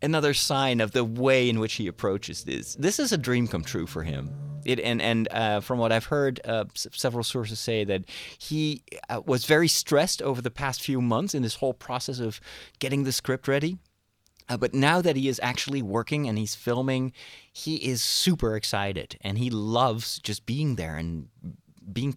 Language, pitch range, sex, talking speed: English, 100-140 Hz, male, 200 wpm